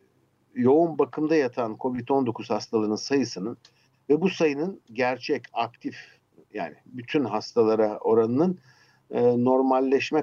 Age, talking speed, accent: 60-79, 100 wpm, native